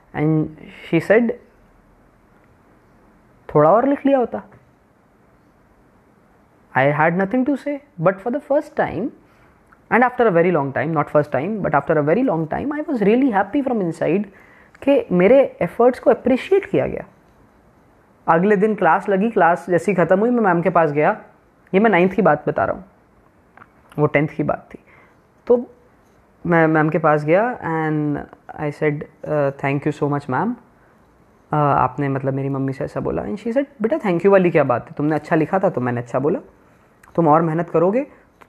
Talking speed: 180 wpm